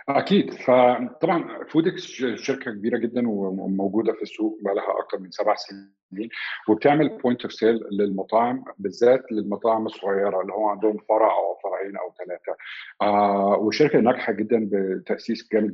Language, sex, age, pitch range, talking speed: Arabic, male, 50-69, 100-115 Hz, 140 wpm